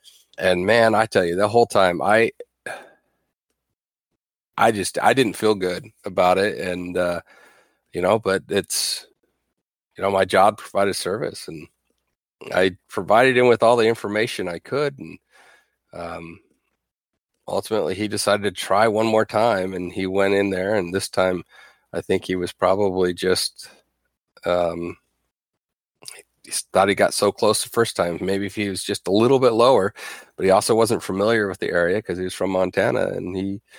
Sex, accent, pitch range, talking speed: male, American, 90-110 Hz, 170 wpm